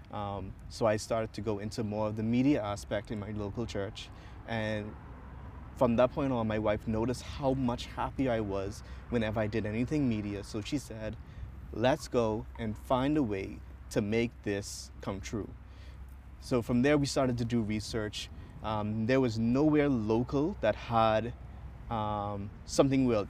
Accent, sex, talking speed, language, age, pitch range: American, male, 170 wpm, English, 30-49, 100-120 Hz